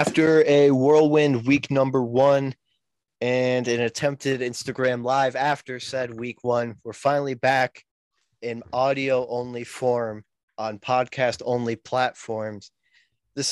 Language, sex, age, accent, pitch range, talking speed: English, male, 20-39, American, 115-130 Hz, 120 wpm